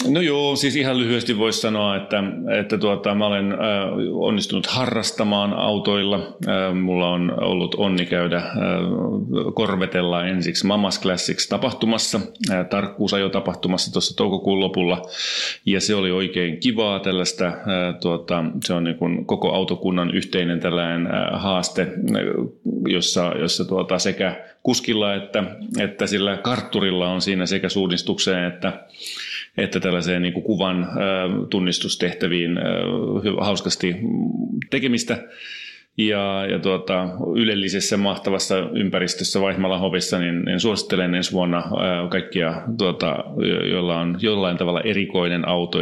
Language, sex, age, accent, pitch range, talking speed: Finnish, male, 30-49, native, 90-105 Hz, 105 wpm